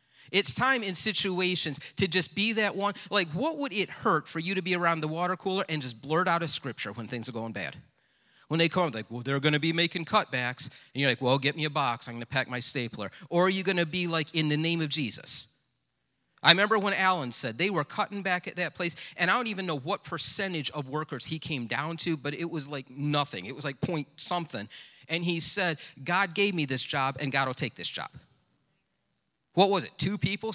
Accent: American